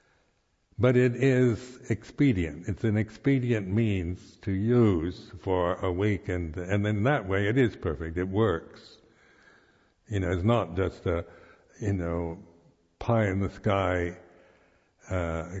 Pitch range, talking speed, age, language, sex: 95-125 Hz, 130 wpm, 60-79, English, male